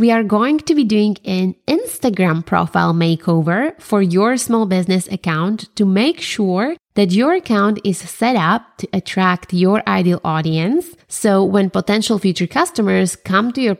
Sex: female